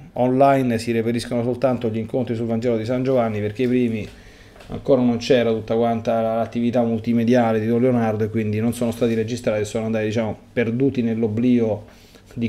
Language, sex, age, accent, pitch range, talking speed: Italian, male, 30-49, native, 110-135 Hz, 175 wpm